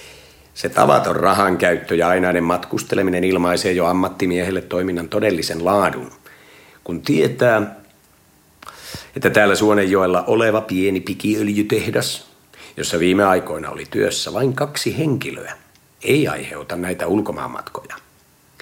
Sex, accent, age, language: male, native, 50-69, Finnish